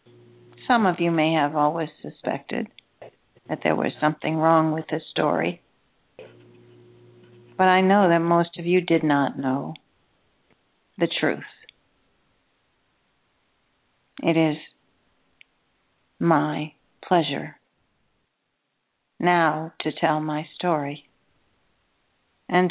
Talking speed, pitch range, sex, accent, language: 100 wpm, 150-180 Hz, female, American, English